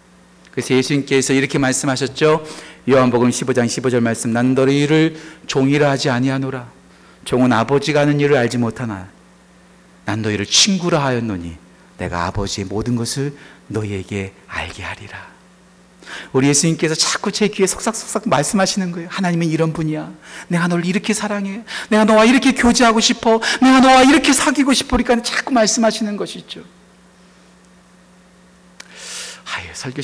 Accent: native